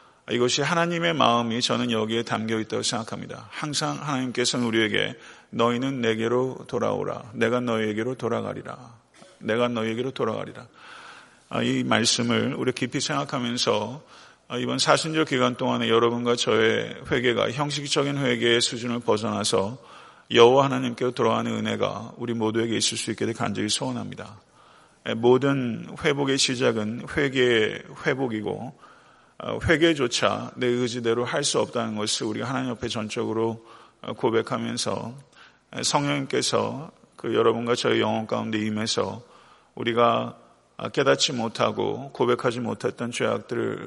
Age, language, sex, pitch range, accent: 40-59, Korean, male, 115-130 Hz, native